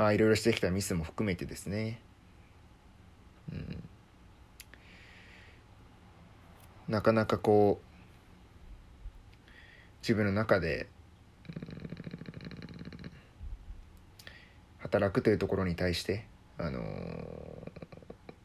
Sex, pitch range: male, 90-105 Hz